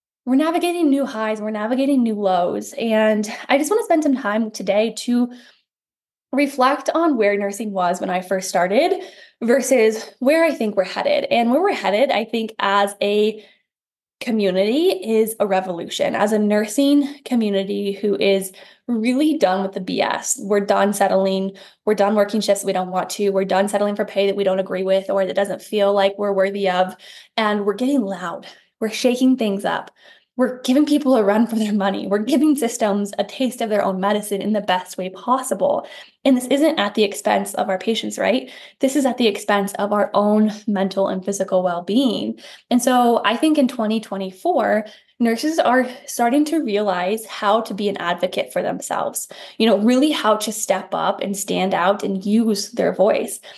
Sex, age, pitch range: female, 10-29, 195-250 Hz